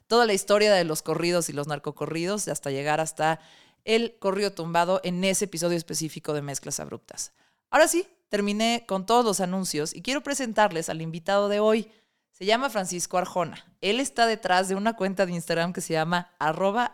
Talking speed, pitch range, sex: 185 wpm, 155-200 Hz, female